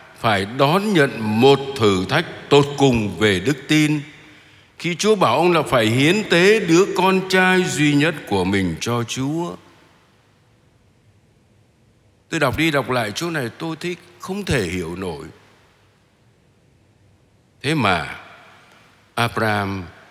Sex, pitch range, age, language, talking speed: male, 110-160 Hz, 60-79, Vietnamese, 130 wpm